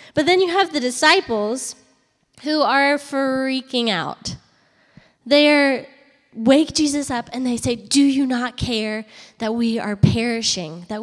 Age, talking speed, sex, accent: 10-29, 140 wpm, female, American